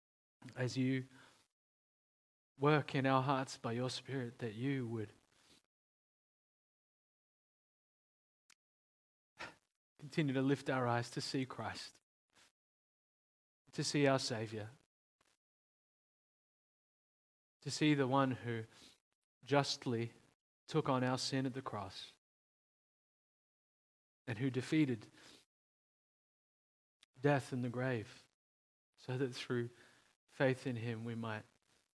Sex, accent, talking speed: male, Australian, 100 wpm